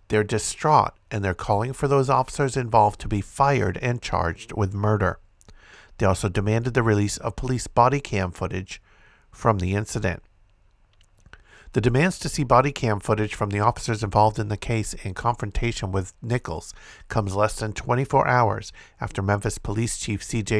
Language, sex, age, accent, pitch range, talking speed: English, male, 50-69, American, 100-120 Hz, 165 wpm